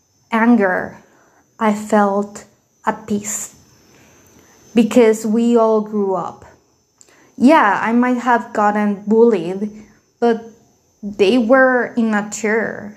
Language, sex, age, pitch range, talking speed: English, female, 20-39, 210-255 Hz, 95 wpm